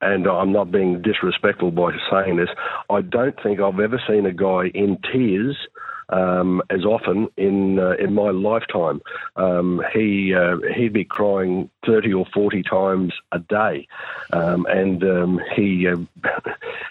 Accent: Australian